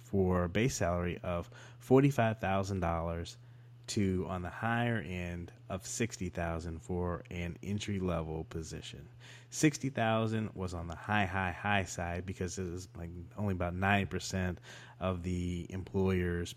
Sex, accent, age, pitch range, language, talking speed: male, American, 30-49, 95-120 Hz, English, 125 wpm